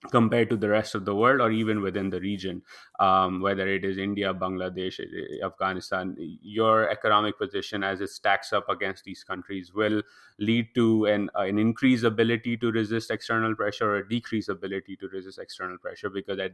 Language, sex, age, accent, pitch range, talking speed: English, male, 30-49, Indian, 95-105 Hz, 180 wpm